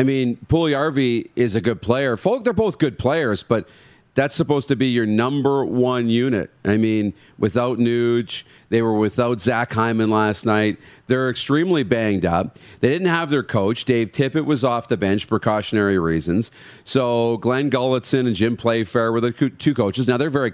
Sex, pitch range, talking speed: male, 110-135 Hz, 180 wpm